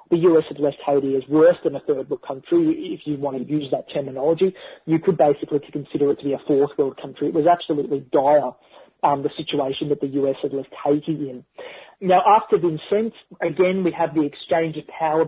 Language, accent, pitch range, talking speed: English, Australian, 150-180 Hz, 210 wpm